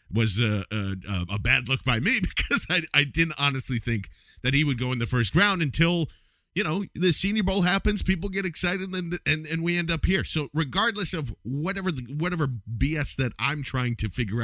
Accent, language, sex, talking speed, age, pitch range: American, English, male, 210 wpm, 50-69, 115-165 Hz